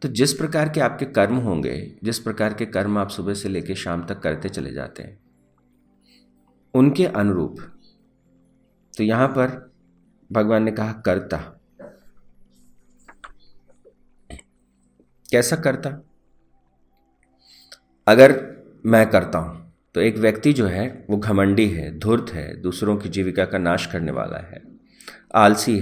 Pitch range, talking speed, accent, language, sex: 80-125 Hz, 130 wpm, native, Hindi, male